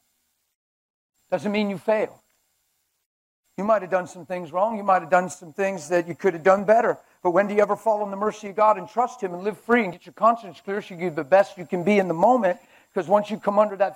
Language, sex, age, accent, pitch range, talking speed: English, male, 50-69, American, 175-230 Hz, 265 wpm